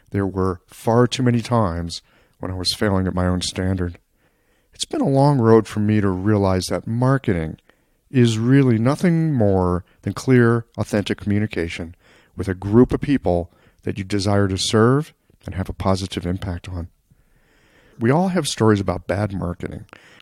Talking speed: 165 wpm